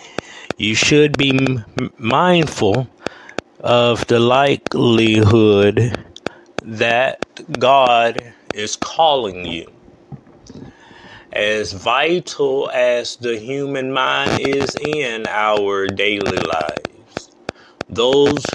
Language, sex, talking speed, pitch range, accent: English, male, 80 wpm, 110-140 Hz, American